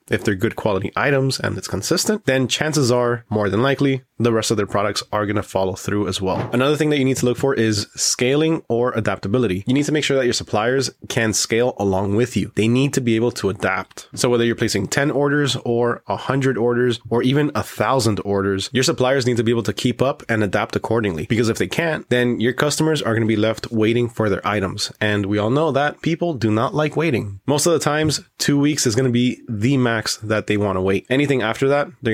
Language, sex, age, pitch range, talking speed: English, male, 20-39, 105-130 Hz, 245 wpm